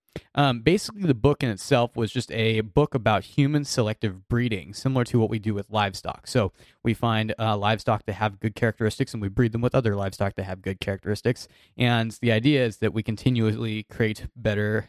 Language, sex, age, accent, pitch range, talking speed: English, male, 20-39, American, 105-130 Hz, 200 wpm